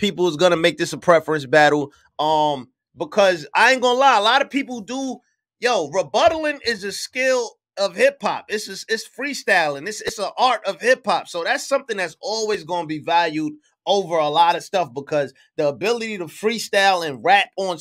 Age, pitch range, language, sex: 30-49, 190-270 Hz, English, male